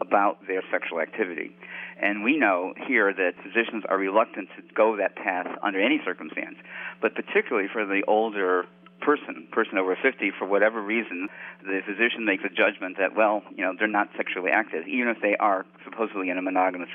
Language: English